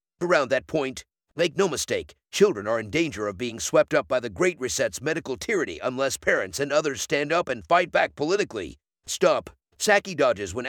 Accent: American